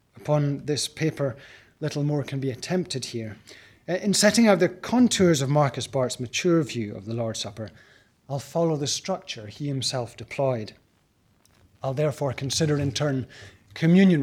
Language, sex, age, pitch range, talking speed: English, male, 30-49, 120-165 Hz, 150 wpm